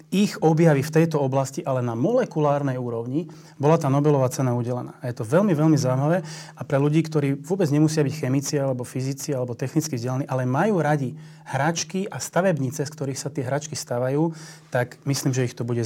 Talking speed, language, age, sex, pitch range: 195 wpm, Slovak, 30-49, male, 130-160 Hz